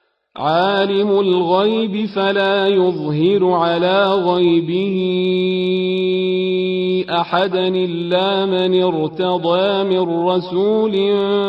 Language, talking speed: Arabic, 65 wpm